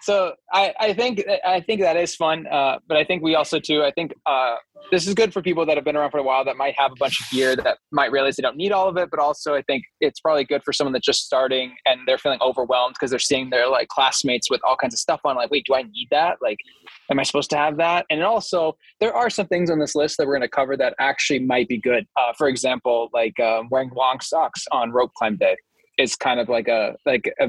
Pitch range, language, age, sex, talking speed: 125-165 Hz, English, 20-39, male, 275 wpm